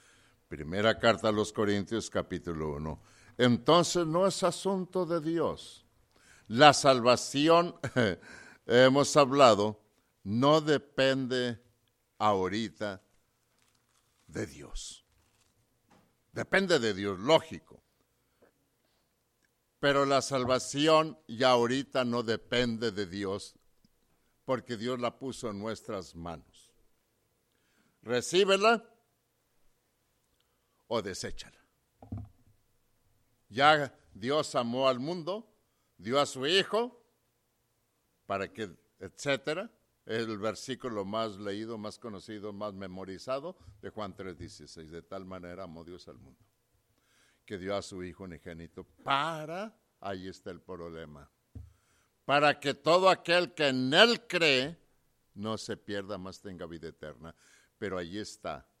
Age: 60-79